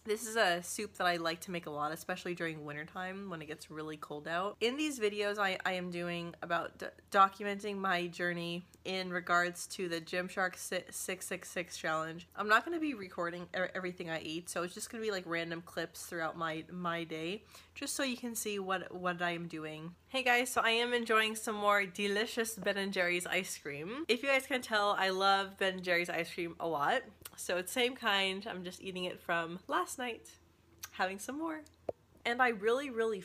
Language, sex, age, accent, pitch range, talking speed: English, female, 20-39, American, 175-215 Hz, 210 wpm